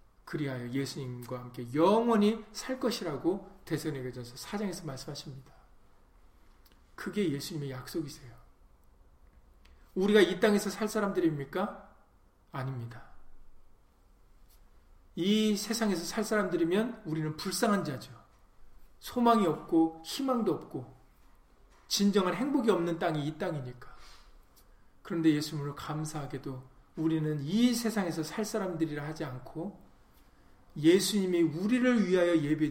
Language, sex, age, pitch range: Korean, male, 40-59, 130-195 Hz